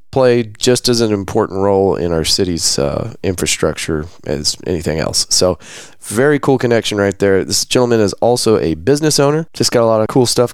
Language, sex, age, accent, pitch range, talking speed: English, male, 30-49, American, 95-125 Hz, 195 wpm